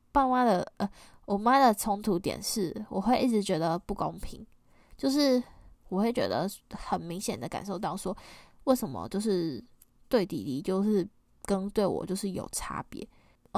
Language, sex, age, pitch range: Chinese, female, 10-29, 175-220 Hz